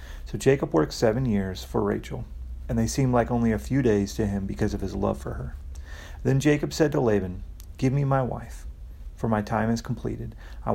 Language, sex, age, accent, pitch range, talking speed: English, male, 40-59, American, 80-120 Hz, 210 wpm